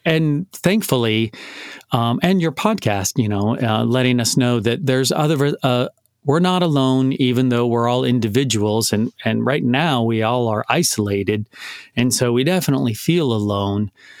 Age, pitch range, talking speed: 40-59, 115-145 Hz, 160 wpm